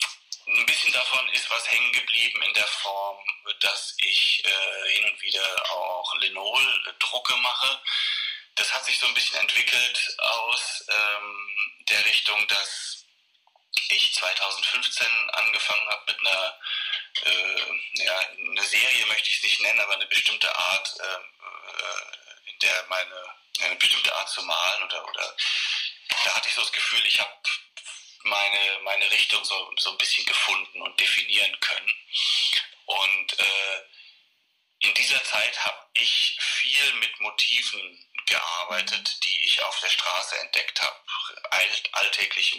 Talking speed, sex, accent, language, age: 140 wpm, male, German, German, 30-49